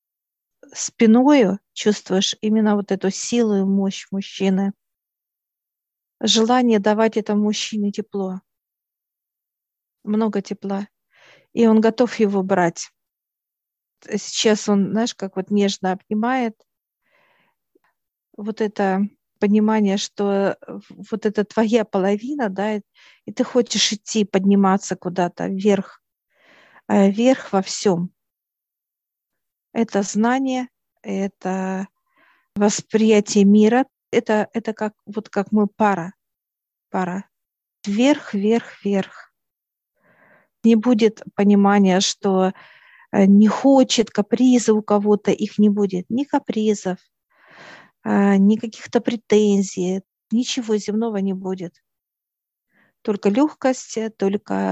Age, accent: 50-69, native